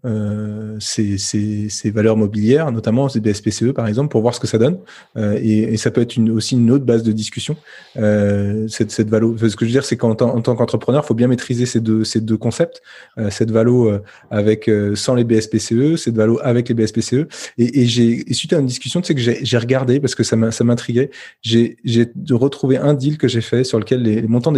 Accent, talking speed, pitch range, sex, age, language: French, 245 wpm, 110-130 Hz, male, 30-49, French